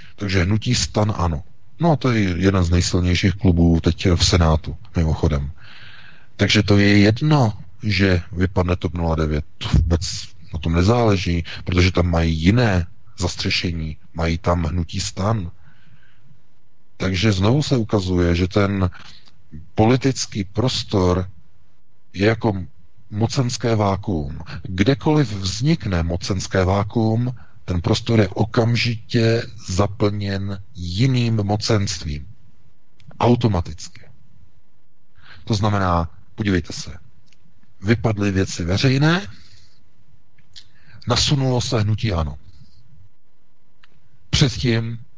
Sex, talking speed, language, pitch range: male, 95 wpm, Czech, 90-115 Hz